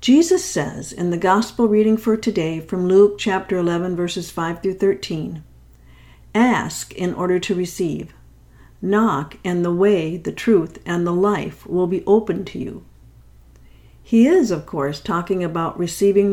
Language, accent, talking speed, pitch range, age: English, American, 155 wpm, 160-210 Hz, 60-79